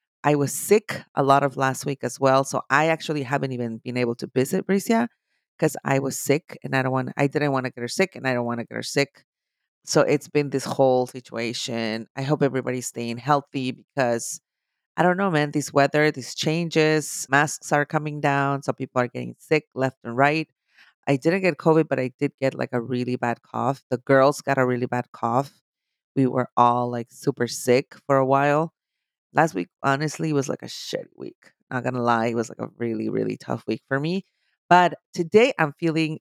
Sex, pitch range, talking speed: female, 125-150 Hz, 215 wpm